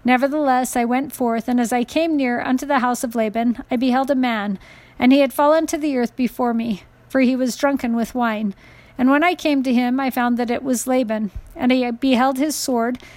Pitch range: 235-265 Hz